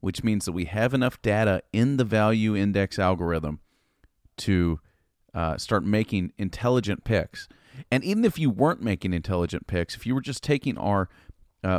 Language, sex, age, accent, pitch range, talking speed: English, male, 40-59, American, 90-125 Hz, 170 wpm